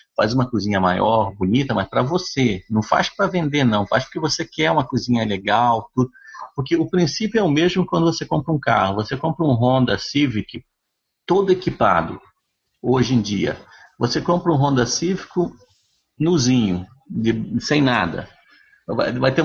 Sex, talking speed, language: male, 160 wpm, Portuguese